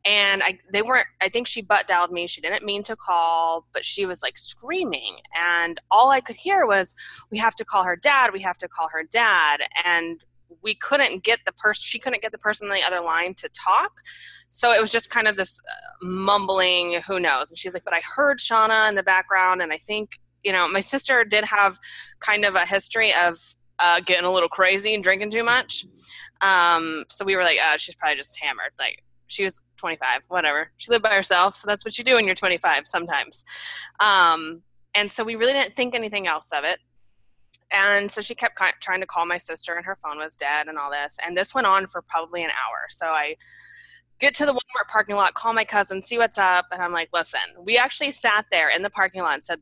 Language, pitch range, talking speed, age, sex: English, 170-220 Hz, 230 wpm, 20-39, female